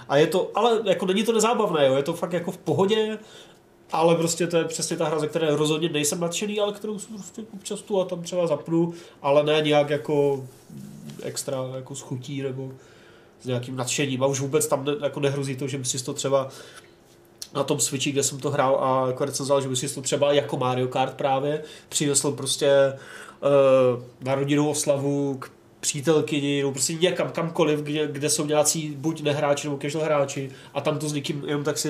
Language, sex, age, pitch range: Czech, male, 30-49, 135-155 Hz